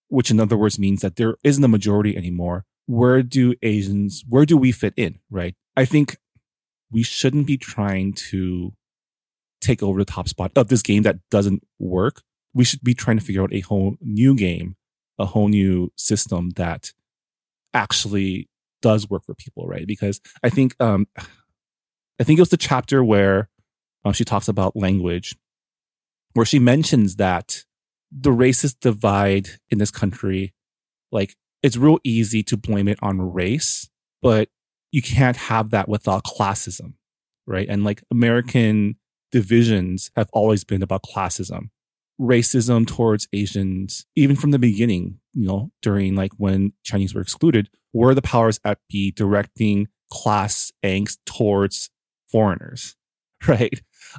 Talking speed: 155 wpm